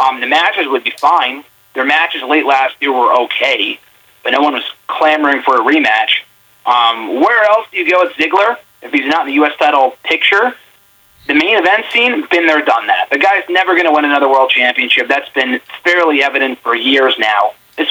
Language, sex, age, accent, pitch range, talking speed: English, male, 30-49, American, 140-185 Hz, 205 wpm